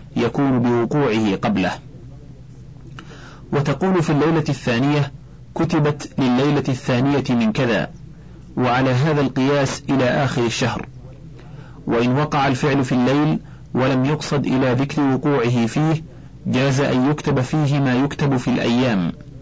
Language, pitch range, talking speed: Arabic, 125-145 Hz, 115 wpm